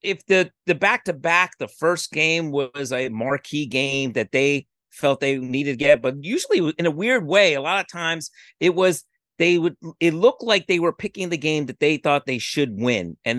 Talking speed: 210 wpm